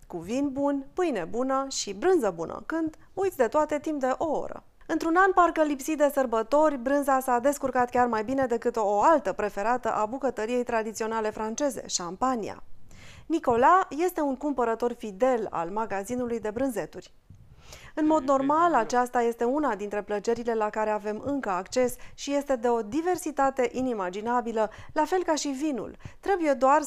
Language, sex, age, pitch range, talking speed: Romanian, female, 30-49, 225-300 Hz, 160 wpm